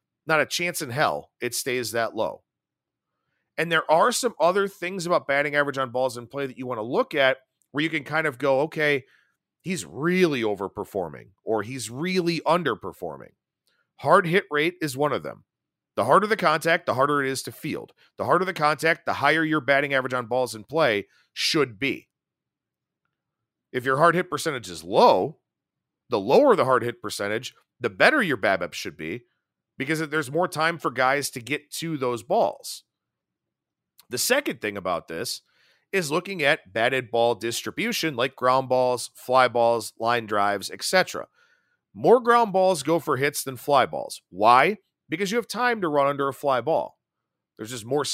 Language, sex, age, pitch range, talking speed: English, male, 40-59, 125-165 Hz, 180 wpm